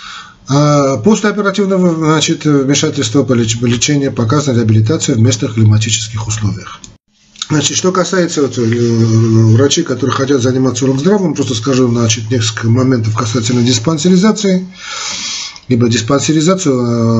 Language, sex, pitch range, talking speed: Russian, male, 115-150 Hz, 105 wpm